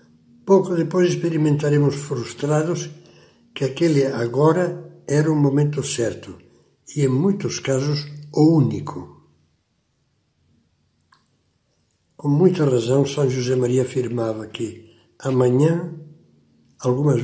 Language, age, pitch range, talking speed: Portuguese, 60-79, 120-150 Hz, 95 wpm